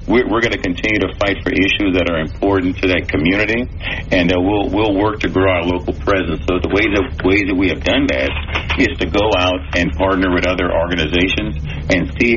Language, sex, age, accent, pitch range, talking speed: English, male, 50-69, American, 85-95 Hz, 215 wpm